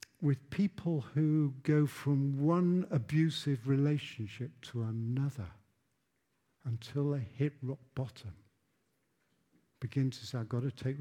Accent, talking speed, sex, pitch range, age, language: British, 115 wpm, male, 115-145 Hz, 50-69, English